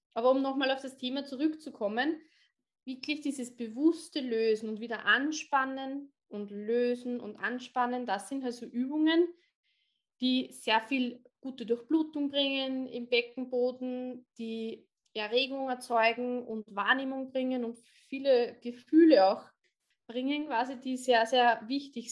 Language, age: German, 20-39